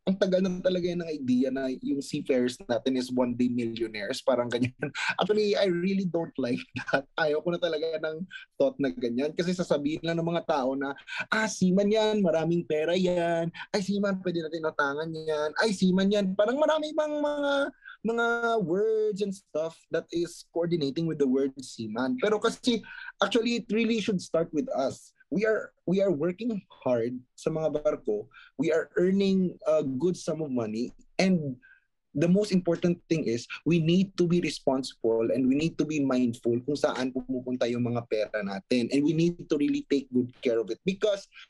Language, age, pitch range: Filipino, 20-39, 135-190 Hz